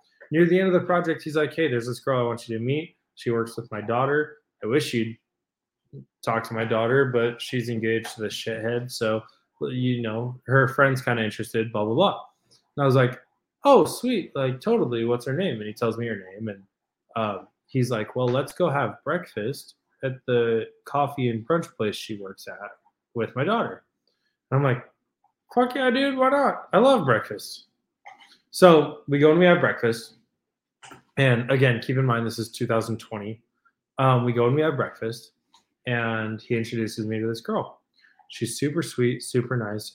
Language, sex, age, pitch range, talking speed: English, male, 20-39, 115-140 Hz, 195 wpm